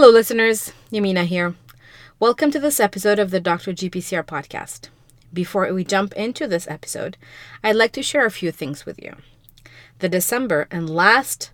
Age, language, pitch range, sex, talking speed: 30-49, English, 155-215 Hz, female, 165 wpm